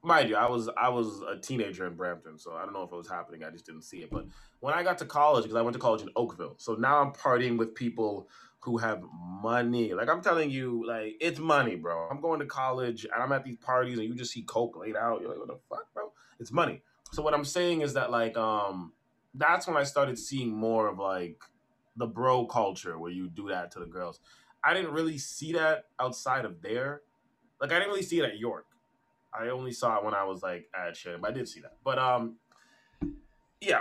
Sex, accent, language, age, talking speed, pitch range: male, American, English, 20-39, 245 wpm, 110-135 Hz